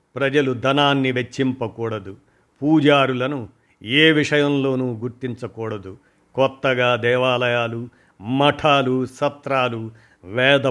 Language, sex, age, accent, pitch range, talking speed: Telugu, male, 50-69, native, 120-145 Hz, 65 wpm